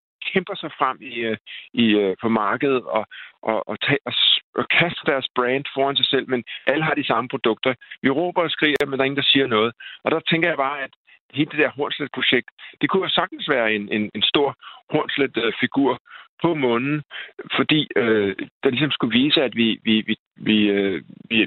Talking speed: 195 wpm